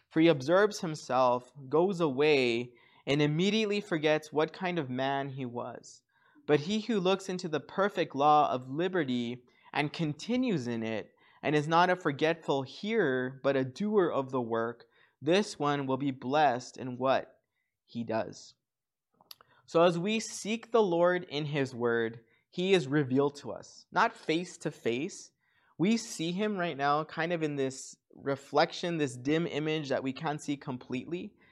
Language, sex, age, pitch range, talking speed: English, male, 20-39, 135-180 Hz, 160 wpm